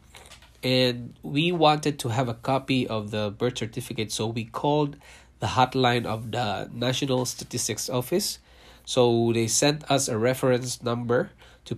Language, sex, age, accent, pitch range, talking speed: English, male, 20-39, Filipino, 110-130 Hz, 150 wpm